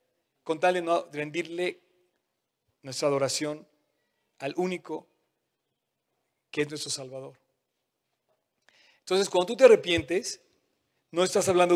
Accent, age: Mexican, 40-59